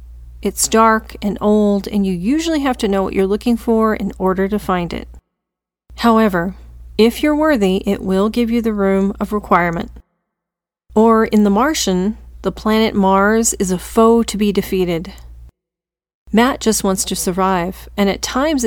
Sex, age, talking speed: female, 40-59, 165 wpm